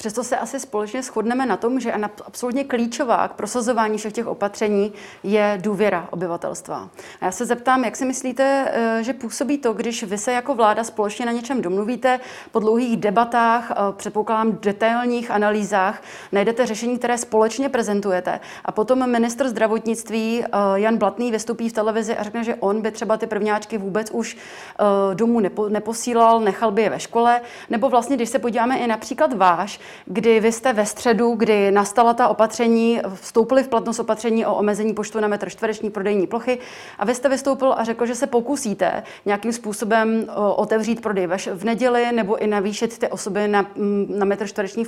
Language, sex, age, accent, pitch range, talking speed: Czech, female, 30-49, native, 205-240 Hz, 170 wpm